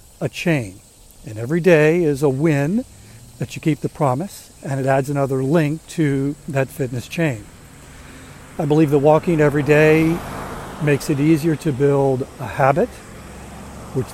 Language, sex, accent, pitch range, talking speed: English, male, American, 130-160 Hz, 155 wpm